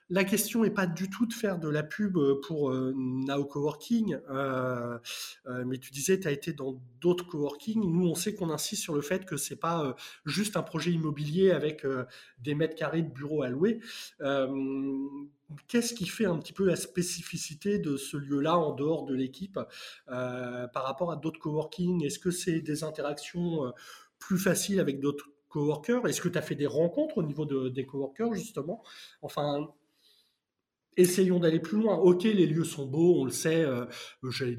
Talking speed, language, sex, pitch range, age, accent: 195 wpm, French, male, 140-180 Hz, 20-39, French